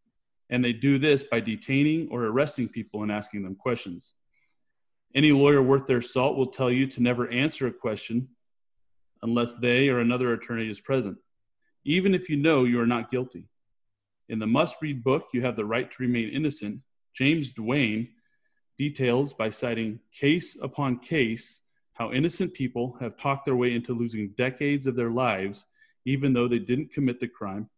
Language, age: English, 30-49